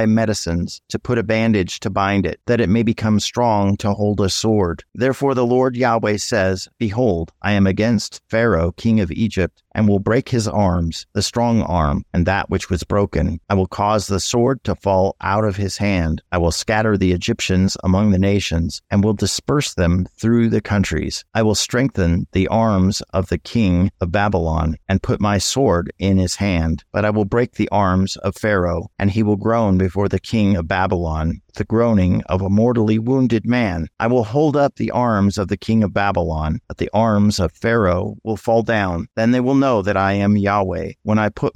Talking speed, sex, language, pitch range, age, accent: 200 wpm, male, English, 90-110 Hz, 50-69, American